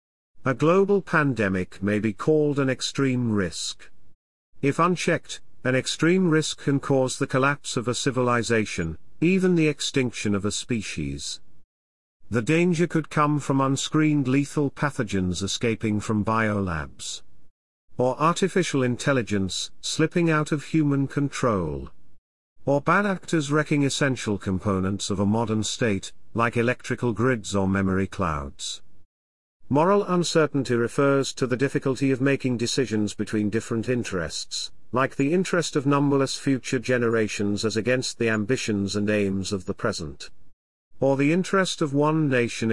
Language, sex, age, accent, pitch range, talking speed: English, male, 50-69, British, 100-140 Hz, 135 wpm